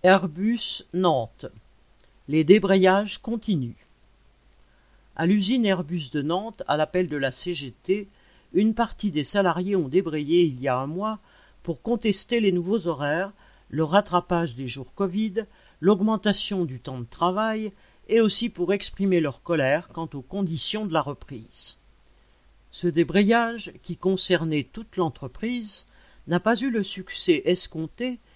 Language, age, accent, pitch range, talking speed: French, 50-69, French, 150-210 Hz, 140 wpm